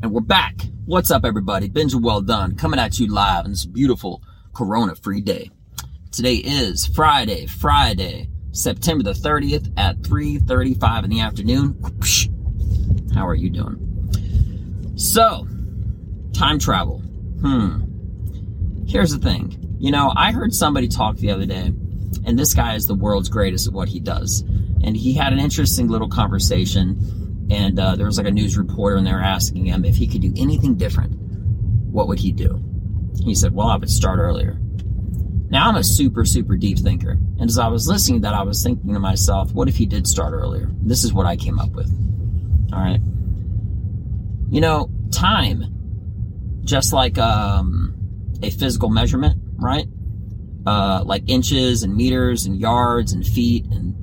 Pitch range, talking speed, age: 95-105 Hz, 170 wpm, 30-49